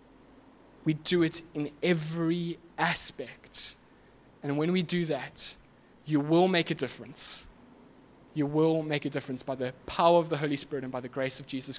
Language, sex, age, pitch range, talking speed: English, male, 20-39, 150-170 Hz, 175 wpm